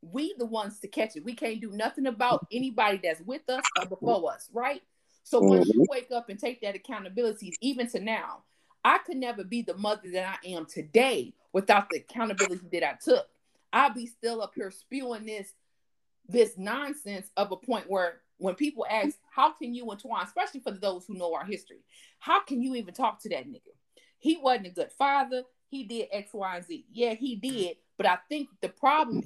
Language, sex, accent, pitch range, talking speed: English, female, American, 195-255 Hz, 205 wpm